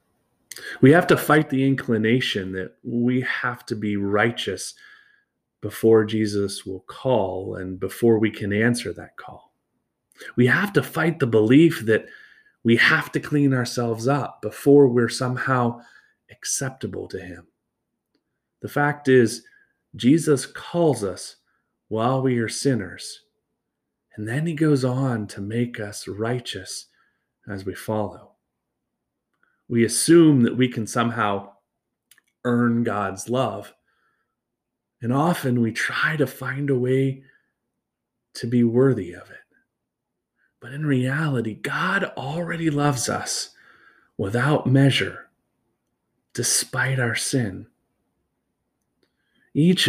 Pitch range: 105-135 Hz